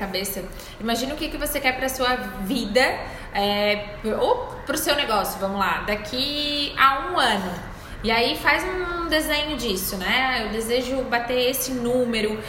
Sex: female